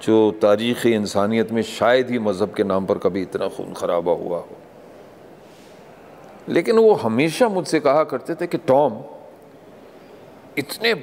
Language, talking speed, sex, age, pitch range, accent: Hindi, 140 wpm, male, 50-69, 105-160 Hz, native